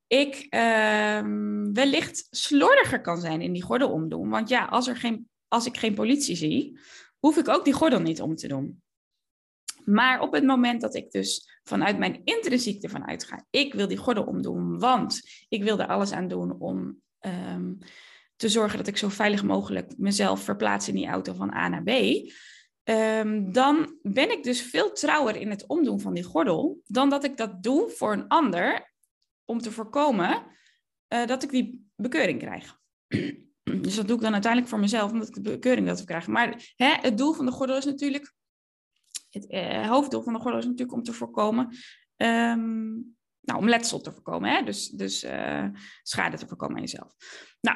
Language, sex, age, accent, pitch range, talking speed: Dutch, female, 20-39, Dutch, 205-270 Hz, 190 wpm